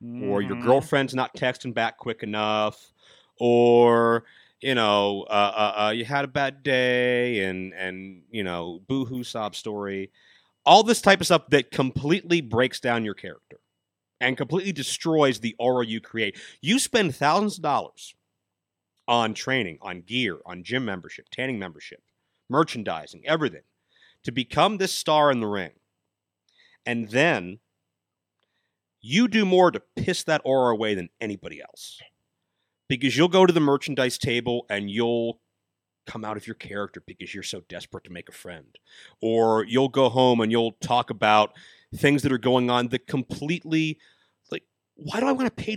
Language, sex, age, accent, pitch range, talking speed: English, male, 40-59, American, 110-165 Hz, 165 wpm